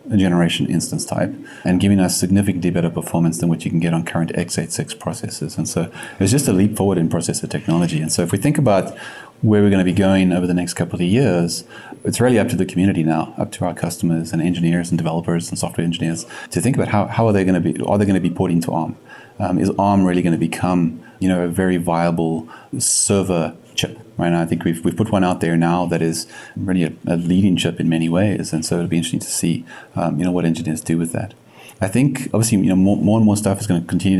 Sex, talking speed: male, 260 wpm